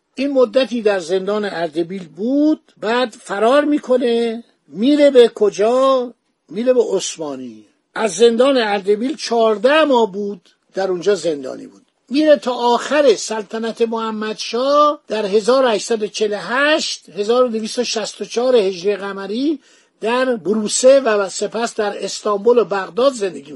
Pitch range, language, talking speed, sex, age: 205-255 Hz, Persian, 110 wpm, male, 60-79